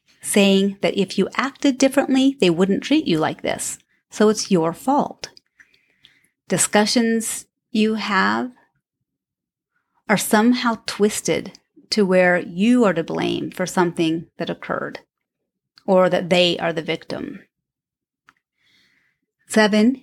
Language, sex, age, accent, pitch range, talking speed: English, female, 30-49, American, 180-225 Hz, 115 wpm